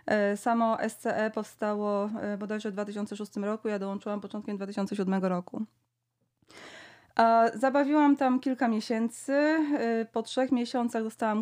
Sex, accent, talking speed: female, native, 110 wpm